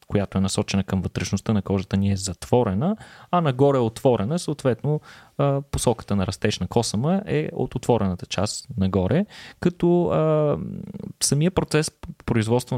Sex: male